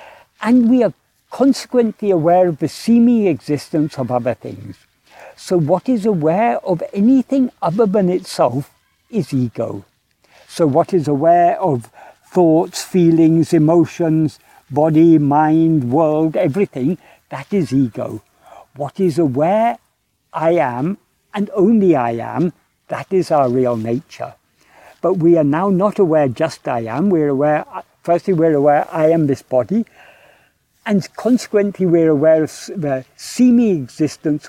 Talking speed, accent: 135 wpm, British